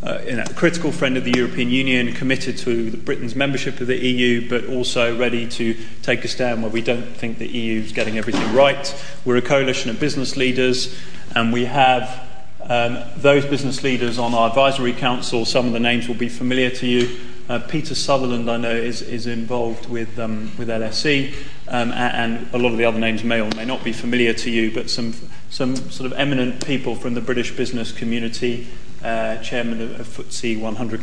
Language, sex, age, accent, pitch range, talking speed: English, male, 30-49, British, 115-130 Hz, 205 wpm